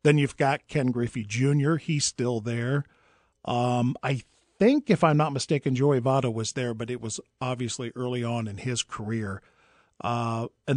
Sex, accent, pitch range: male, American, 120-155 Hz